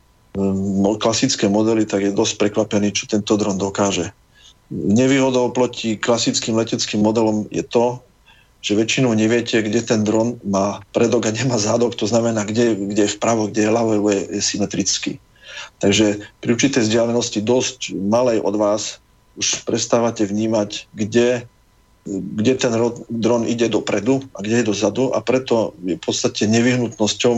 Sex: male